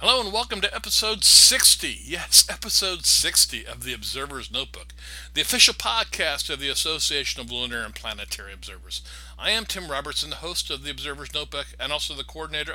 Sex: male